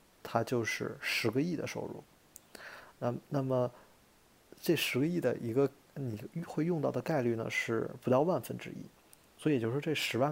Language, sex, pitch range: Chinese, male, 115-145 Hz